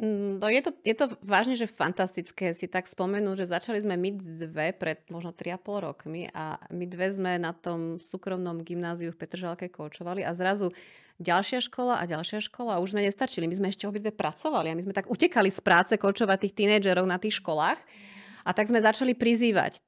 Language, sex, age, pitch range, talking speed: Slovak, female, 30-49, 175-210 Hz, 200 wpm